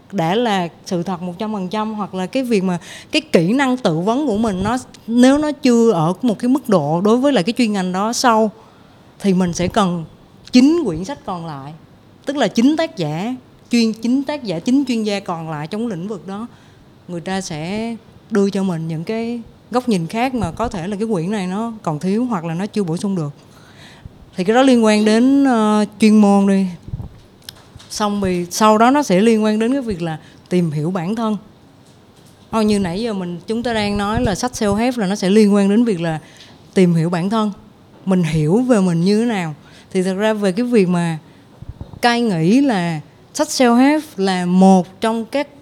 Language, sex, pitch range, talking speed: Vietnamese, female, 180-235 Hz, 215 wpm